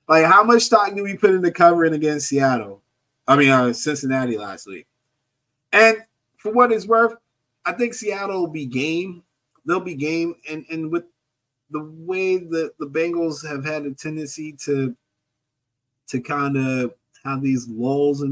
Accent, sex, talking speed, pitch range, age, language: American, male, 165 wpm, 135-170 Hz, 30-49, English